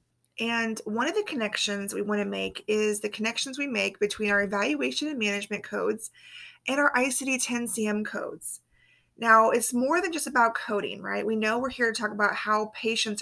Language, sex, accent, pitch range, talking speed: English, female, American, 210-265 Hz, 185 wpm